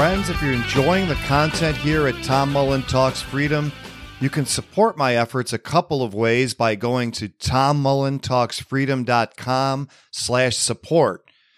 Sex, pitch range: male, 120-145 Hz